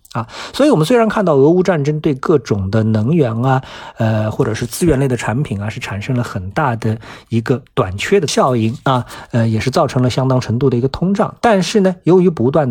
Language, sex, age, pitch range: Chinese, male, 50-69, 110-155 Hz